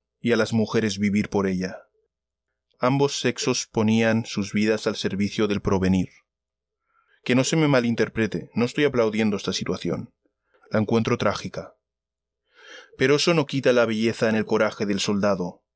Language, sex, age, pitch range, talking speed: Spanish, male, 20-39, 105-135 Hz, 150 wpm